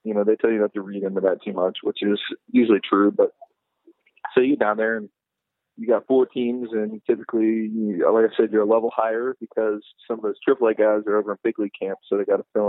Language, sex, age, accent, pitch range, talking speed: English, male, 20-39, American, 105-125 Hz, 255 wpm